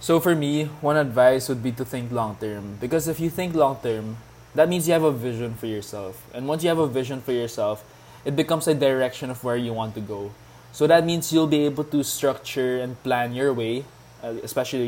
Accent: Filipino